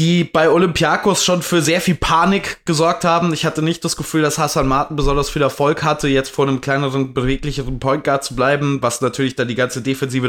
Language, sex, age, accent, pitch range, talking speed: German, male, 20-39, German, 130-160 Hz, 215 wpm